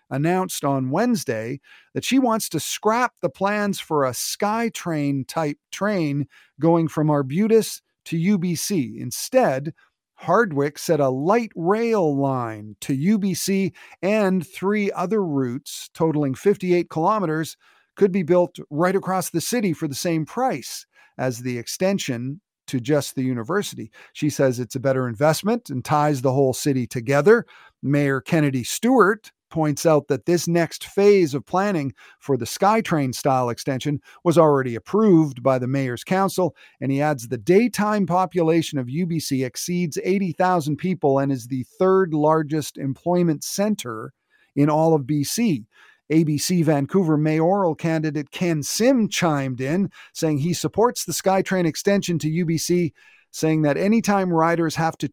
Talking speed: 145 wpm